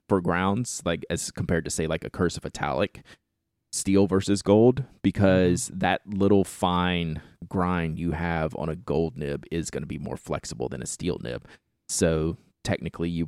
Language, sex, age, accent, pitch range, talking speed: English, male, 30-49, American, 80-100 Hz, 170 wpm